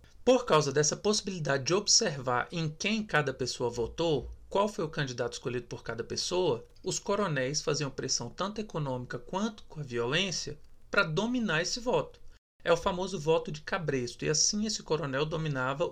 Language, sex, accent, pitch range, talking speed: Portuguese, male, Brazilian, 150-190 Hz, 165 wpm